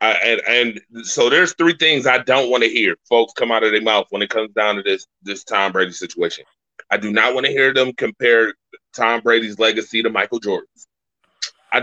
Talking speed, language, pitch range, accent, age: 220 wpm, English, 110-125 Hz, American, 20-39